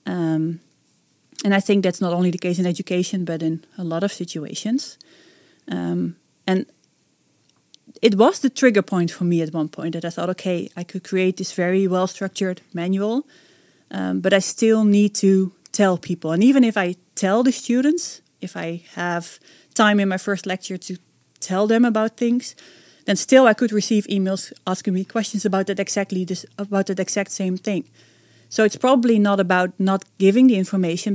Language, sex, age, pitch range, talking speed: English, female, 30-49, 175-210 Hz, 175 wpm